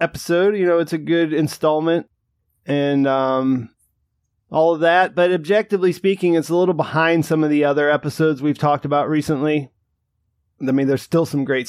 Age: 30-49